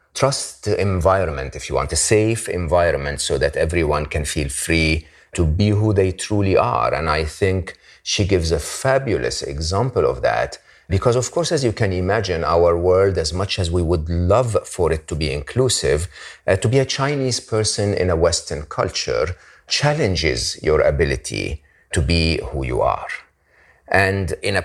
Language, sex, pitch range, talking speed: English, male, 80-110 Hz, 175 wpm